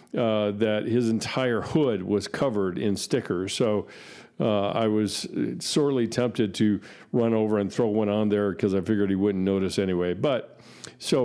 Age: 50-69